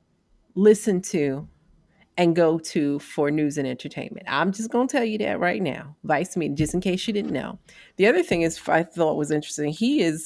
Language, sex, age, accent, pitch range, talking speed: English, female, 40-59, American, 145-190 Hz, 210 wpm